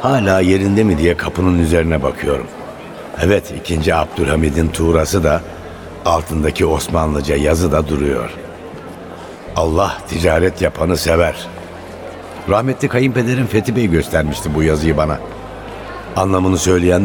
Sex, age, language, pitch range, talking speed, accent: male, 60-79, Turkish, 80-100 Hz, 110 wpm, native